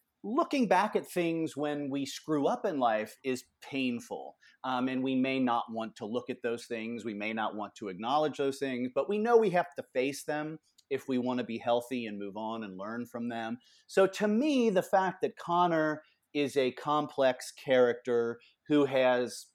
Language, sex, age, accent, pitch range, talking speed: English, male, 40-59, American, 125-170 Hz, 200 wpm